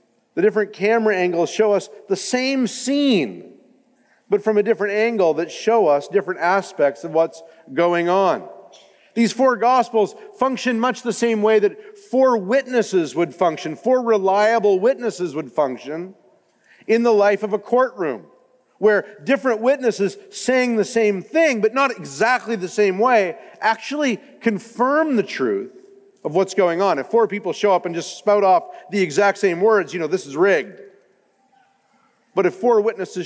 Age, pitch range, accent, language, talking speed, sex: 50-69, 180-235 Hz, American, English, 160 wpm, male